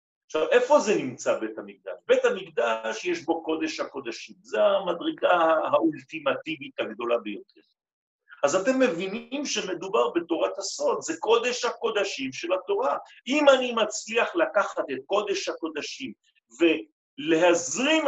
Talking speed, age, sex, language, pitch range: 120 wpm, 50-69, male, French, 175-295 Hz